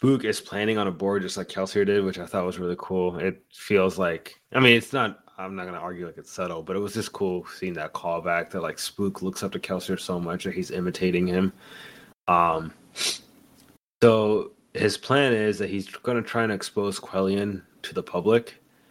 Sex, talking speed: male, 215 wpm